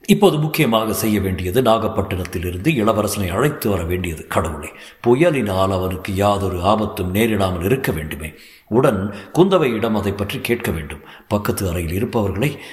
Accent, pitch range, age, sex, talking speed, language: native, 100-160 Hz, 50-69, male, 125 wpm, Tamil